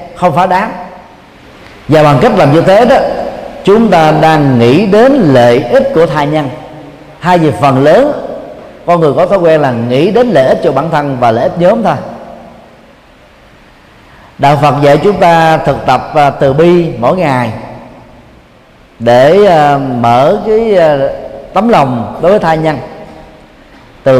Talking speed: 155 wpm